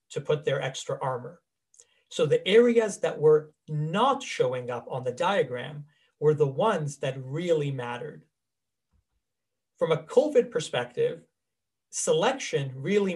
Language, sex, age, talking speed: English, male, 40-59, 130 wpm